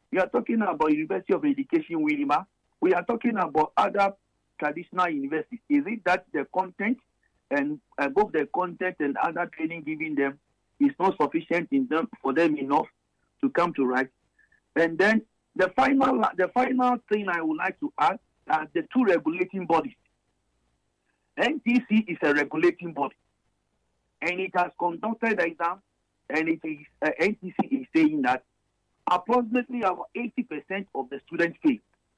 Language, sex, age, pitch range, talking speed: English, male, 50-69, 150-235 Hz, 155 wpm